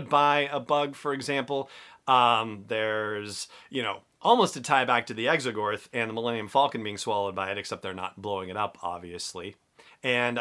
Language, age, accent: English, 40-59, American